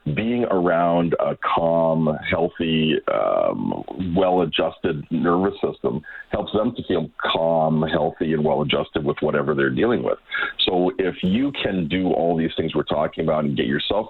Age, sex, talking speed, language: 40-59, male, 155 wpm, English